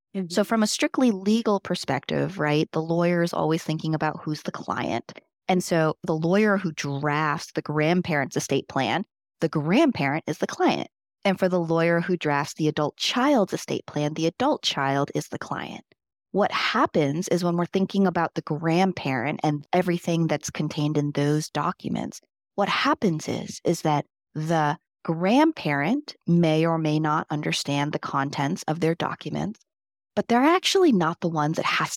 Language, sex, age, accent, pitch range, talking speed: English, female, 30-49, American, 150-195 Hz, 165 wpm